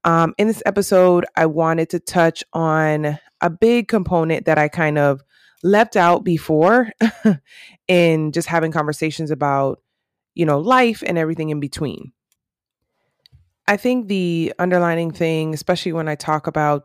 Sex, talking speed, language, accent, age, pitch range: female, 145 wpm, English, American, 20-39, 150-180 Hz